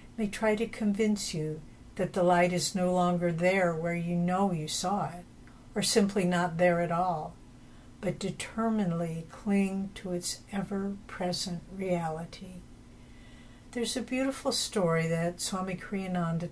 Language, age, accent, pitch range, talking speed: English, 60-79, American, 170-205 Hz, 140 wpm